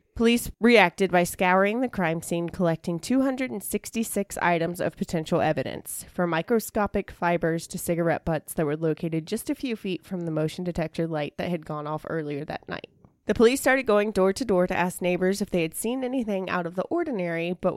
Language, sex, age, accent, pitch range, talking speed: English, female, 20-39, American, 165-205 Hz, 190 wpm